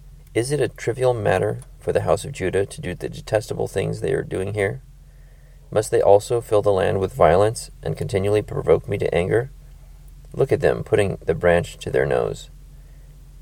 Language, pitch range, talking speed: English, 75-105 Hz, 190 wpm